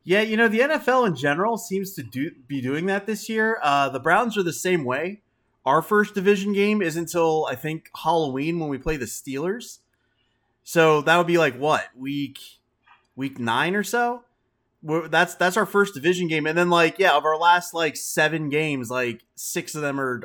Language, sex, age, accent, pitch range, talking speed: English, male, 30-49, American, 125-165 Hz, 200 wpm